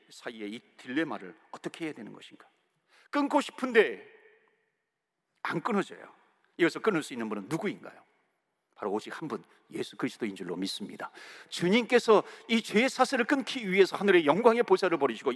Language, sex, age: Korean, male, 50-69